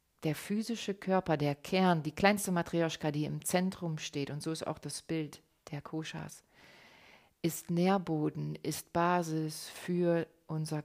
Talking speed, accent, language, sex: 145 wpm, German, German, female